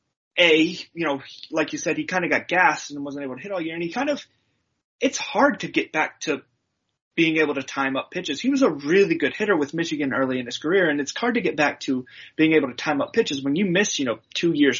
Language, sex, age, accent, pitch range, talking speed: English, male, 30-49, American, 135-180 Hz, 270 wpm